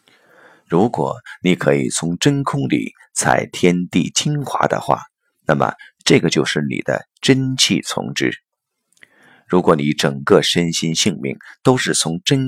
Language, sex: Chinese, male